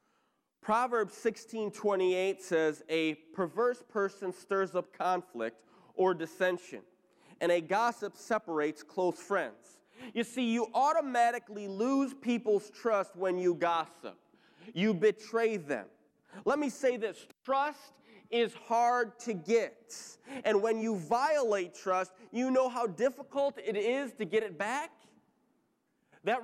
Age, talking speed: 30-49, 125 wpm